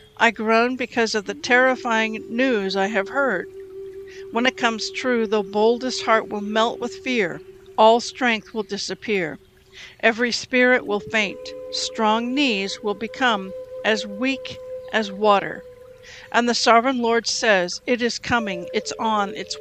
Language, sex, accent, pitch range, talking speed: English, female, American, 210-275 Hz, 145 wpm